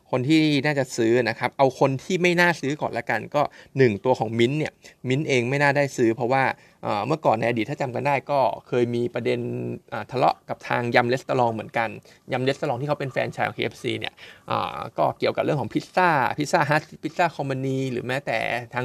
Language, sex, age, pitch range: Thai, male, 20-39, 120-145 Hz